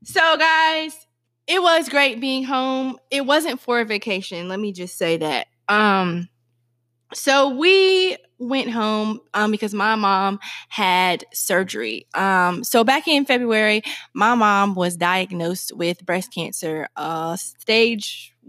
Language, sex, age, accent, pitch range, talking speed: English, female, 20-39, American, 180-235 Hz, 135 wpm